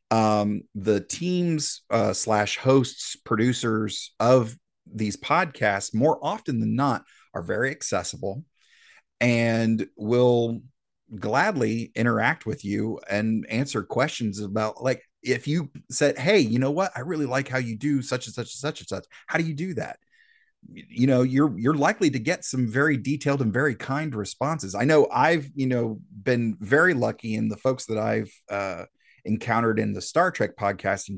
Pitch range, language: 110-140 Hz, English